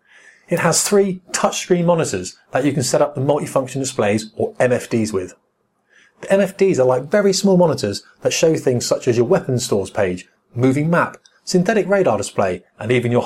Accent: British